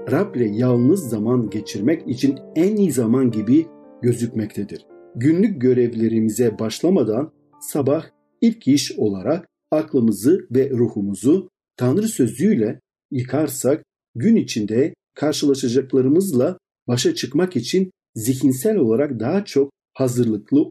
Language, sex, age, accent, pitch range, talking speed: Turkish, male, 50-69, native, 115-150 Hz, 100 wpm